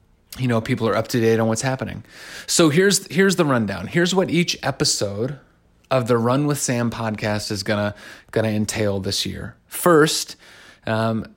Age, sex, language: 30-49, male, English